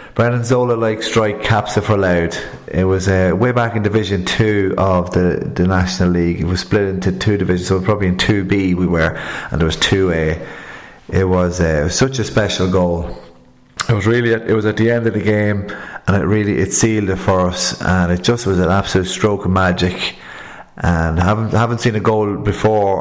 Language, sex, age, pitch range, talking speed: English, male, 30-49, 95-110 Hz, 220 wpm